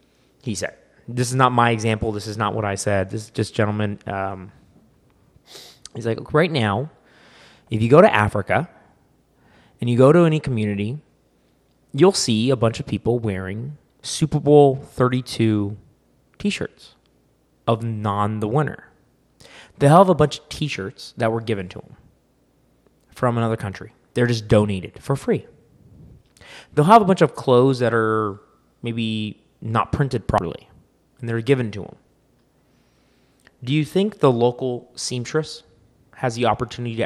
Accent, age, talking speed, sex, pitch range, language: American, 20-39, 150 wpm, male, 105-135 Hz, English